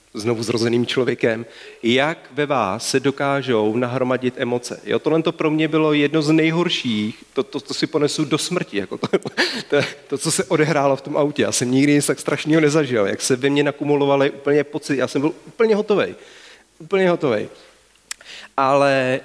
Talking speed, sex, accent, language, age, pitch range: 175 wpm, male, native, Czech, 40-59, 120-155 Hz